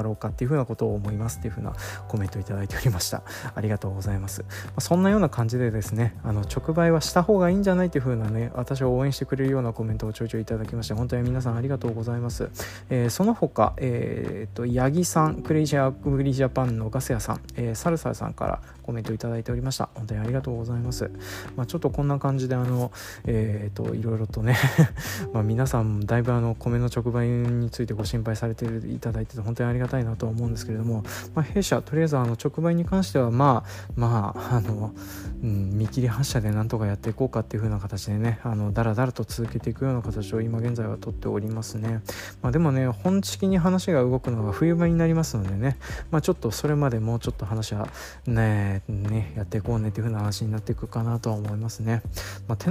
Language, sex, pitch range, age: Japanese, male, 110-135 Hz, 20-39